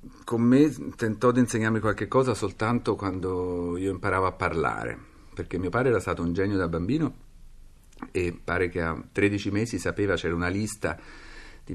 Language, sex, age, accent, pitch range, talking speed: Italian, male, 50-69, native, 80-100 Hz, 170 wpm